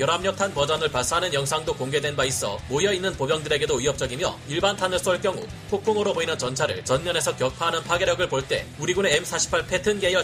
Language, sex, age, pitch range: Korean, male, 30-49, 150-195 Hz